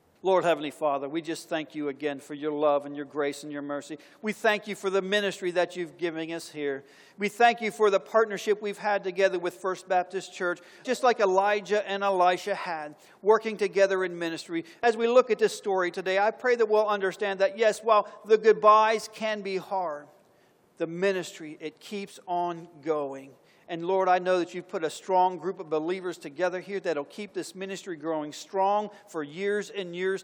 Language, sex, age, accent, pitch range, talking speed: English, male, 50-69, American, 155-205 Hz, 200 wpm